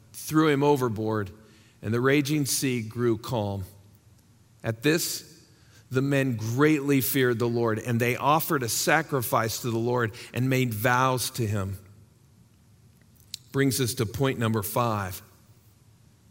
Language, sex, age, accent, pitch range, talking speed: English, male, 40-59, American, 110-130 Hz, 130 wpm